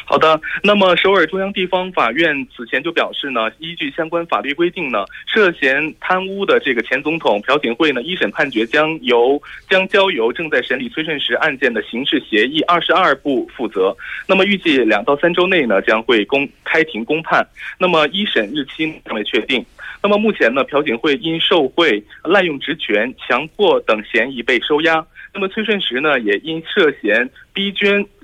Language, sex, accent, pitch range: Korean, male, Chinese, 150-200 Hz